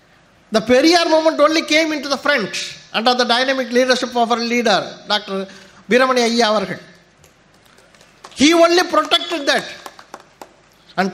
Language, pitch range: Tamil, 200-280 Hz